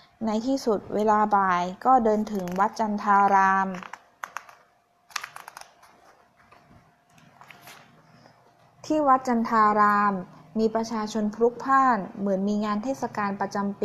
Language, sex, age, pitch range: Thai, female, 20-39, 195-230 Hz